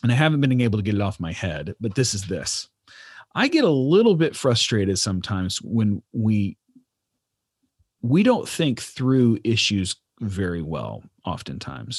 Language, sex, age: English, male, 40-59